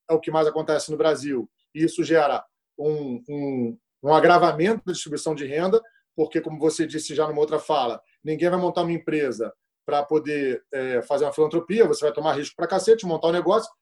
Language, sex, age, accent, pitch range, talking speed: Portuguese, male, 40-59, Brazilian, 155-190 Hz, 200 wpm